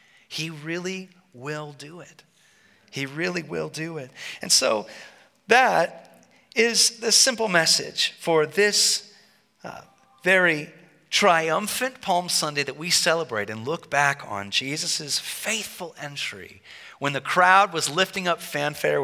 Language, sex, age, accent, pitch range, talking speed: English, male, 30-49, American, 120-175 Hz, 130 wpm